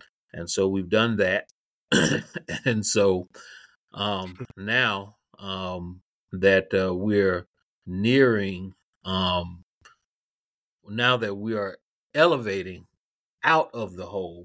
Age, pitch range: 30-49, 95-105 Hz